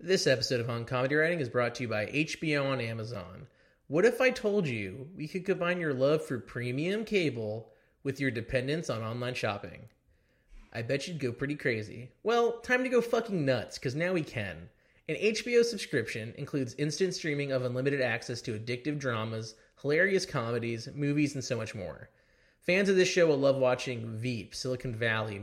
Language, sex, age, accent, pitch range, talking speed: English, male, 30-49, American, 120-165 Hz, 185 wpm